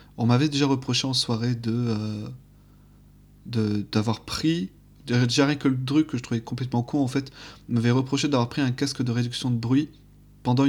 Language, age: French, 30-49